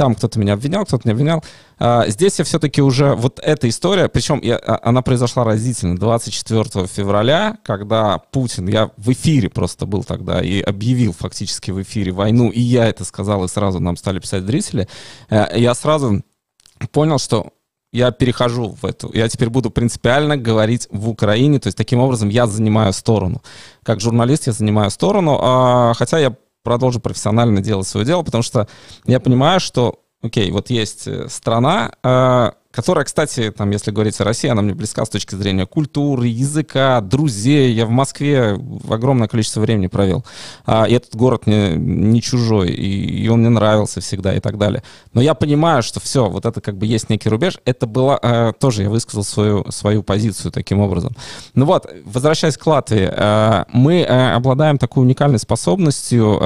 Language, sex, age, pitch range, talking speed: Russian, male, 20-39, 105-130 Hz, 165 wpm